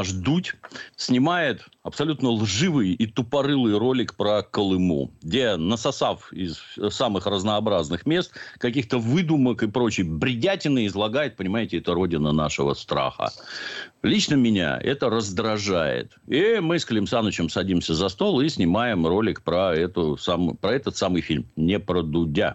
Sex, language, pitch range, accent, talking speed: male, Russian, 95-135 Hz, native, 135 wpm